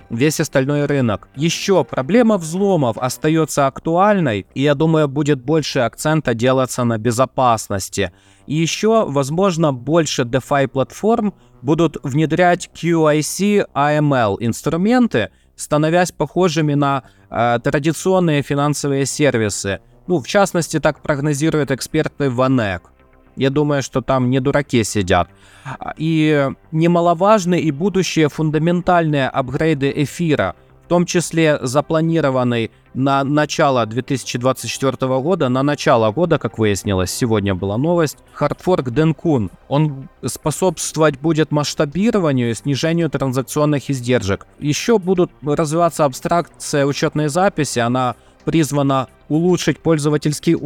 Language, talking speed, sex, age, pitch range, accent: Russian, 110 wpm, male, 20-39, 130-165 Hz, native